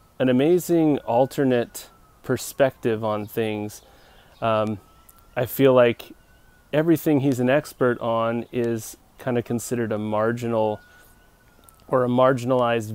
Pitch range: 110-130 Hz